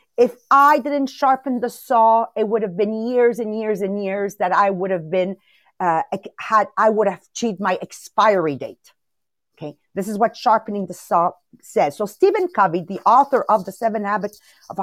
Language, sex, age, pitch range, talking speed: English, female, 40-59, 220-305 Hz, 190 wpm